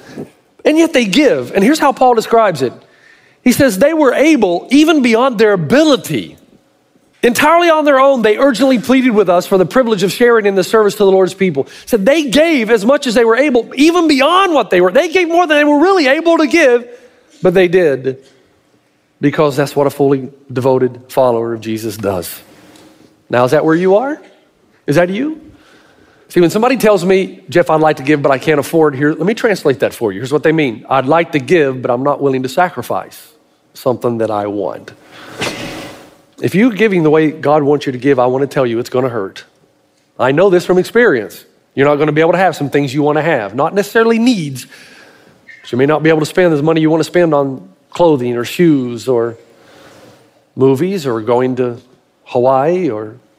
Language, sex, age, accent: English, male, 40-59, American